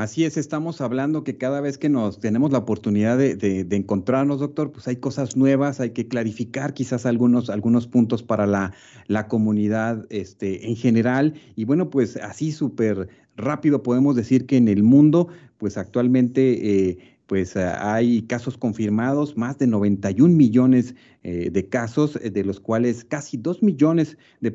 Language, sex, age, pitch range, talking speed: Spanish, male, 40-59, 105-140 Hz, 170 wpm